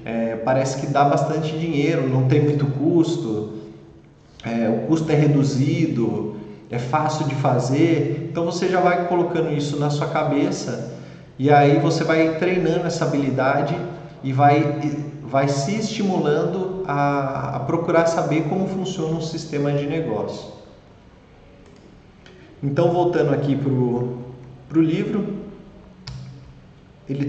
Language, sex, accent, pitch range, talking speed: Portuguese, male, Brazilian, 135-170 Hz, 120 wpm